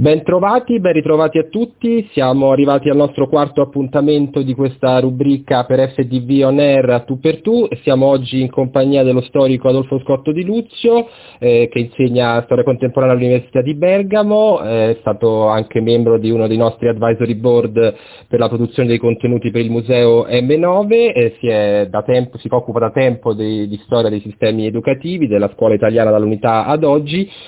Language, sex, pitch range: Italian, male, 110-140 Hz